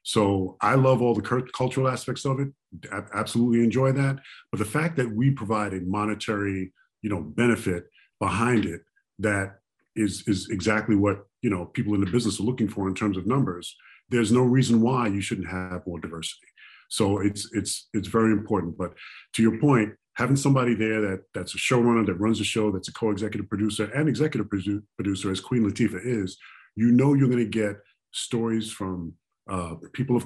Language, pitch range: English, 100-120 Hz